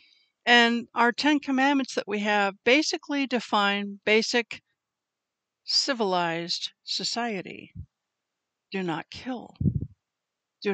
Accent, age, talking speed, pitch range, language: American, 60-79, 90 wpm, 205-270 Hz, English